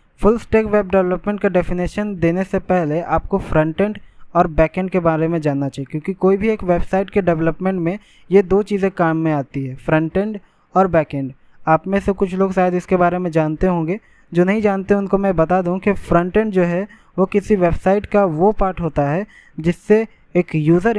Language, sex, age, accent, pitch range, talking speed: Hindi, male, 20-39, native, 160-200 Hz, 205 wpm